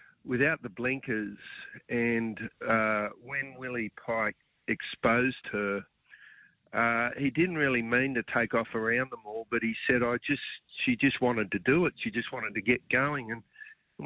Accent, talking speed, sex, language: Australian, 165 wpm, male, English